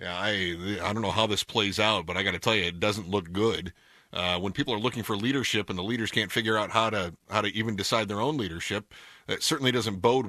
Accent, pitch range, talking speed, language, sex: American, 95-130 Hz, 260 wpm, English, male